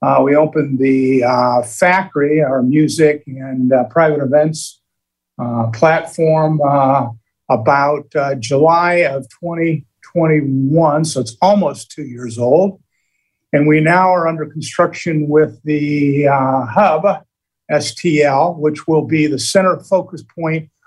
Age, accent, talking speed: 50-69, American, 125 wpm